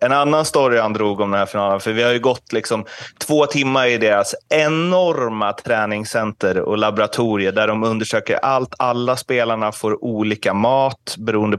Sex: male